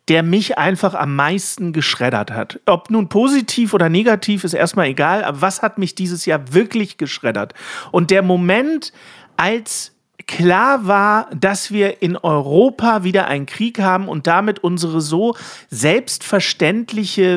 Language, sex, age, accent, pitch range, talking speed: German, male, 50-69, German, 175-220 Hz, 145 wpm